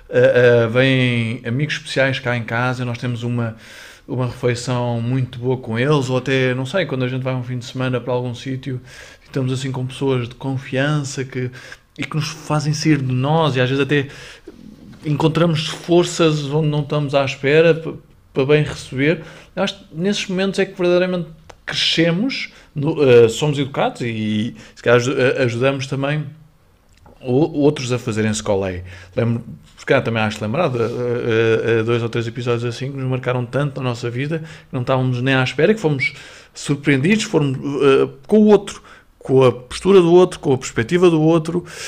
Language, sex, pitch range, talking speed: Portuguese, male, 120-150 Hz, 175 wpm